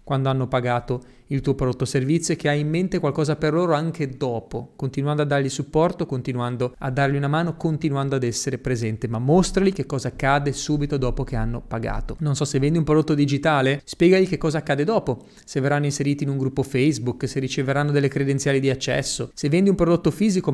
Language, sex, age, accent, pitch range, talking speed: Italian, male, 30-49, native, 135-165 Hz, 205 wpm